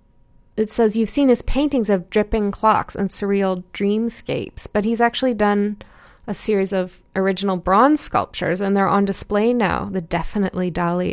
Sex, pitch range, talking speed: female, 185-215 Hz, 160 wpm